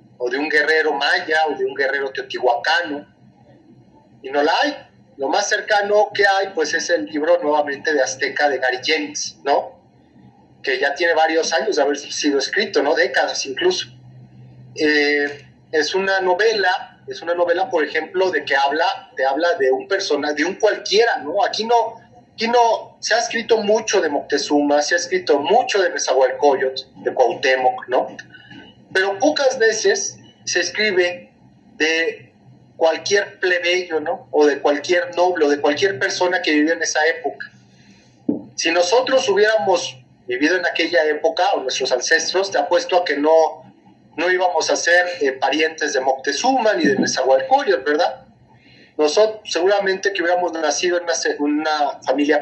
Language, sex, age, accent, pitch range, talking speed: Spanish, male, 30-49, Mexican, 145-200 Hz, 160 wpm